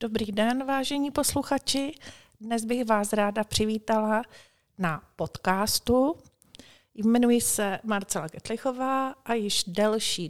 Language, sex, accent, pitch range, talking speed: Czech, female, native, 180-225 Hz, 105 wpm